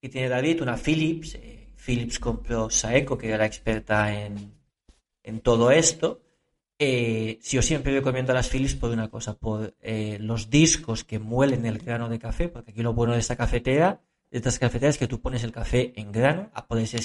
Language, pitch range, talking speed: Spanish, 115-140 Hz, 205 wpm